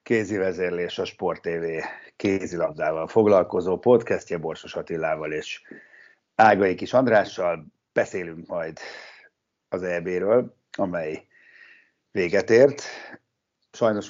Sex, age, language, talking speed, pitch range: male, 50-69, Hungarian, 95 wpm, 90-110 Hz